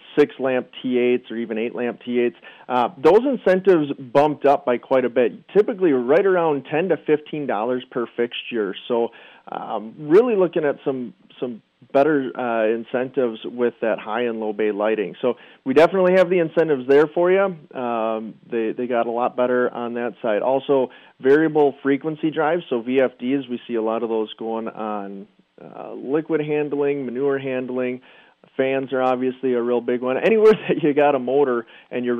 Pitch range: 120-145 Hz